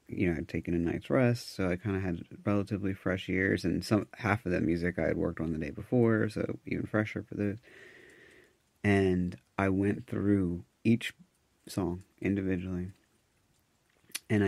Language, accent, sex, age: English, American, male, 30-49